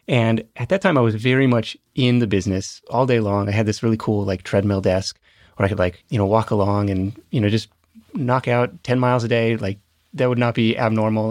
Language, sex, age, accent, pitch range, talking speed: English, male, 30-49, American, 105-135 Hz, 245 wpm